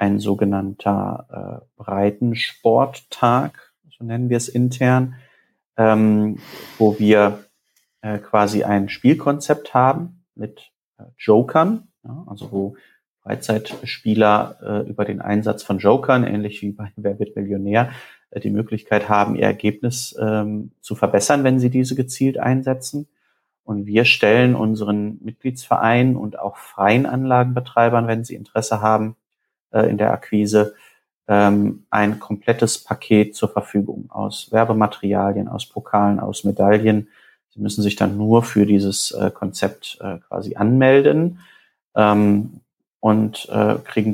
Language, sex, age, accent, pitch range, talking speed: German, male, 30-49, German, 100-120 Hz, 125 wpm